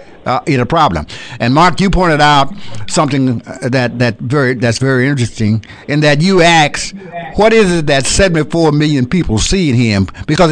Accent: American